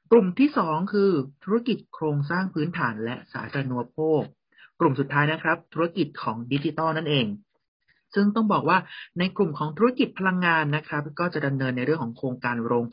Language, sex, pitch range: Thai, male, 135-170 Hz